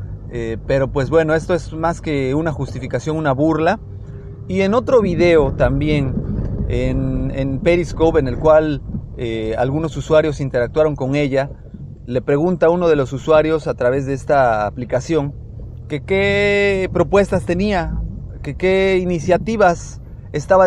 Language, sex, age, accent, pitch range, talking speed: Spanish, male, 30-49, Mexican, 125-165 Hz, 140 wpm